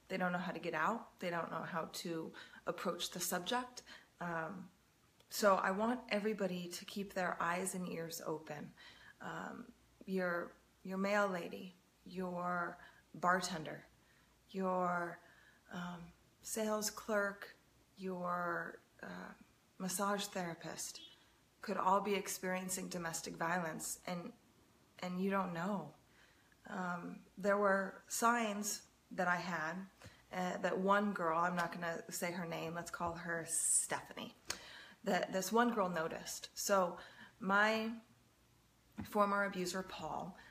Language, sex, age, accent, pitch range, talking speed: English, female, 30-49, American, 175-200 Hz, 125 wpm